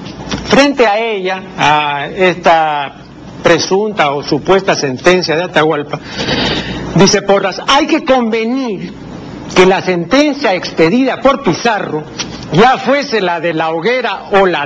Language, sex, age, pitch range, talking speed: Spanish, male, 60-79, 165-235 Hz, 125 wpm